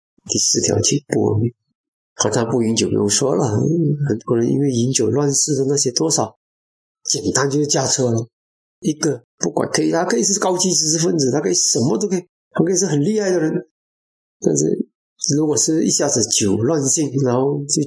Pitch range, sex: 115-170 Hz, male